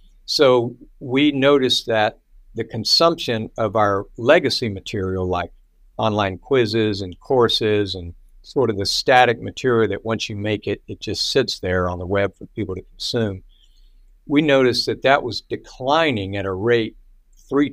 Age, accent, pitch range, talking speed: 60-79, American, 95-115 Hz, 160 wpm